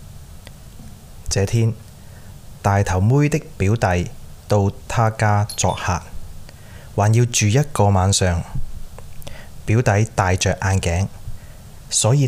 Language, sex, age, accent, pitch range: Chinese, male, 20-39, native, 90-115 Hz